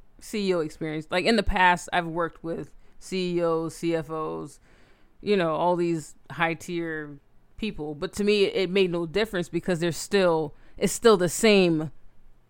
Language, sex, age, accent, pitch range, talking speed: English, female, 30-49, American, 165-205 Hz, 155 wpm